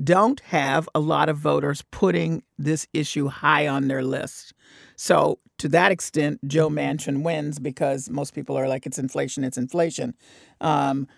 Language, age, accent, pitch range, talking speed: English, 50-69, American, 150-200 Hz, 160 wpm